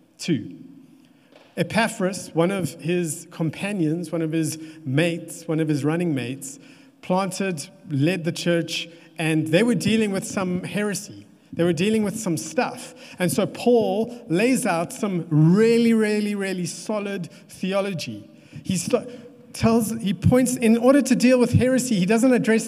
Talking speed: 150 wpm